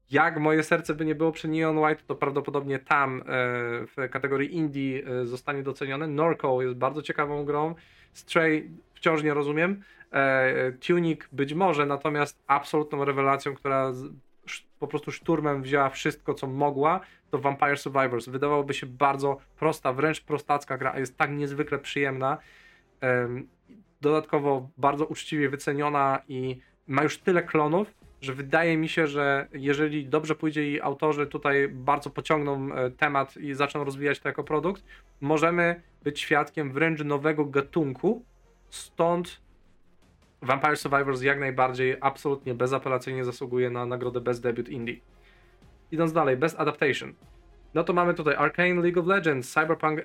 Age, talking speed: 20-39, 140 wpm